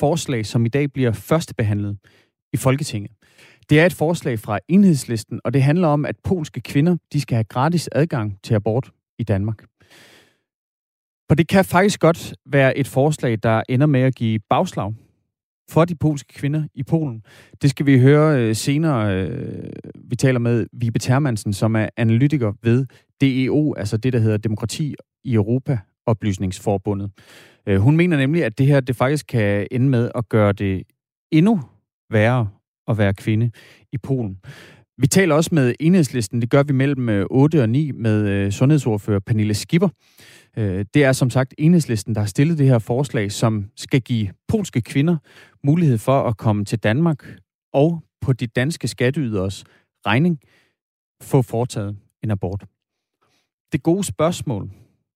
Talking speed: 160 wpm